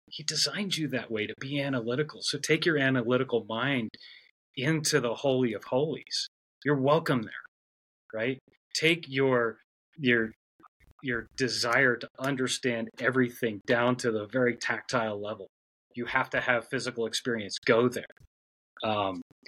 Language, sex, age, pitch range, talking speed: English, male, 30-49, 110-130 Hz, 140 wpm